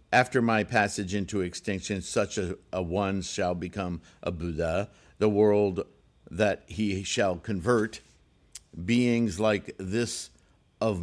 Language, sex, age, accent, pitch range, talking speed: English, male, 50-69, American, 90-125 Hz, 125 wpm